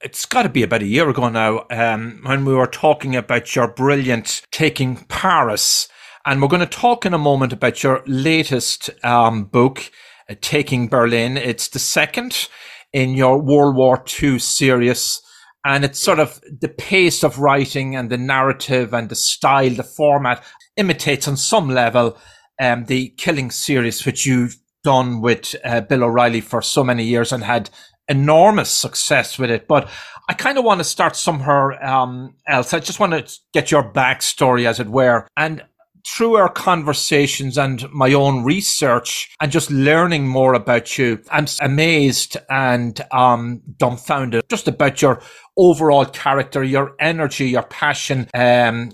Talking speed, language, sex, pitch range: 165 wpm, English, male, 125-150 Hz